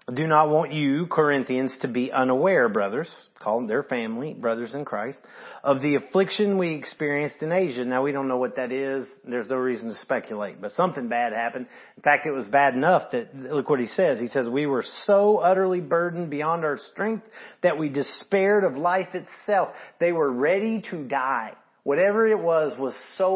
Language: English